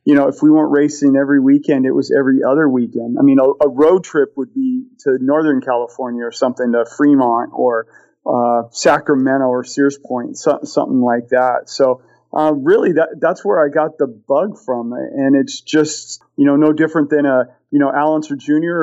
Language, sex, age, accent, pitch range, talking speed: English, male, 40-59, American, 130-155 Hz, 200 wpm